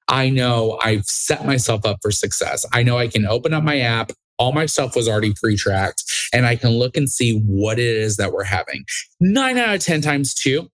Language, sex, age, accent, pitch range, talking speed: English, male, 20-39, American, 105-135 Hz, 230 wpm